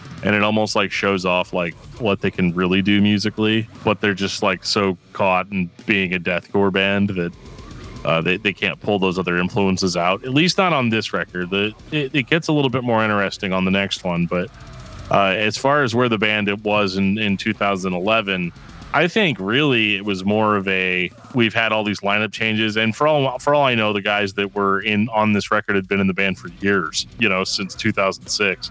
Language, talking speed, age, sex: English, 220 wpm, 20-39, male